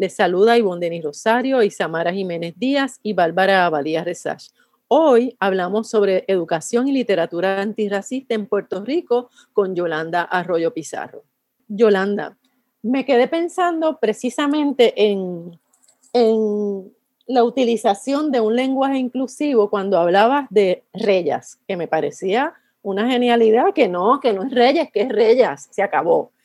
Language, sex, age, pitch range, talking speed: Spanish, female, 30-49, 200-255 Hz, 135 wpm